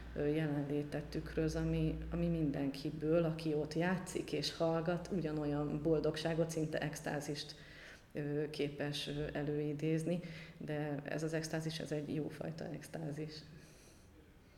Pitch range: 145-165 Hz